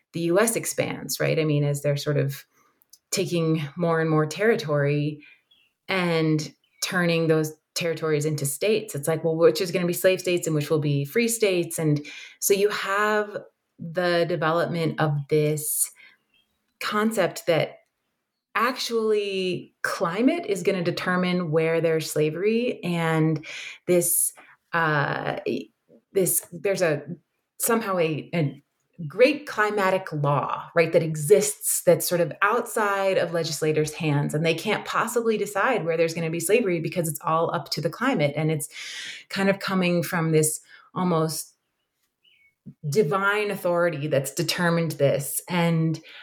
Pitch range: 160-205 Hz